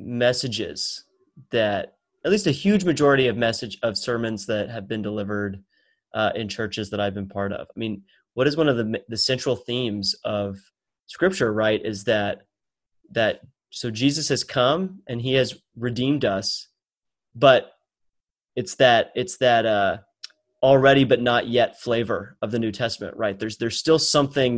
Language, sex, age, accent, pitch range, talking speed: English, male, 30-49, American, 110-130 Hz, 165 wpm